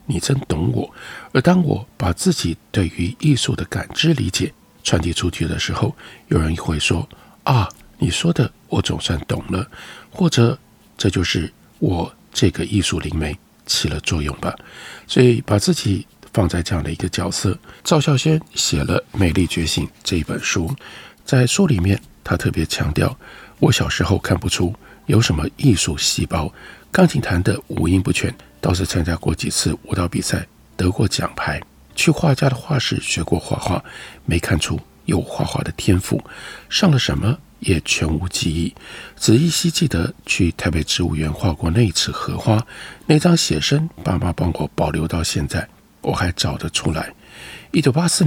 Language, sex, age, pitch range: Chinese, male, 60-79, 85-135 Hz